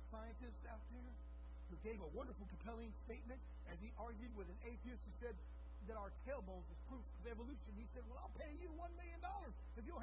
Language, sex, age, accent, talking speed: English, male, 50-69, American, 210 wpm